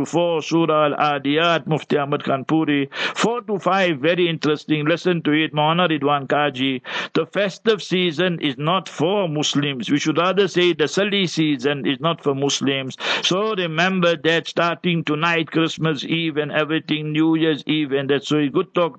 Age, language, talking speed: 60-79, English, 170 wpm